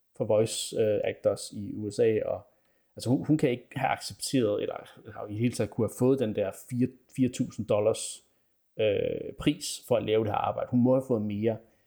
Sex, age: male, 30-49